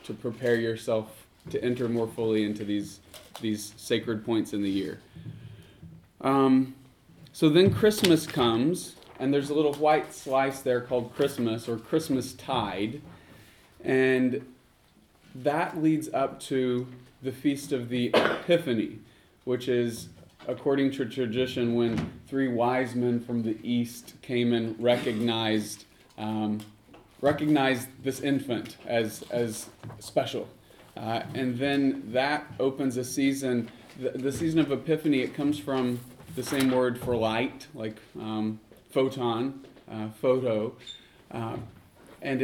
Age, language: 30-49, English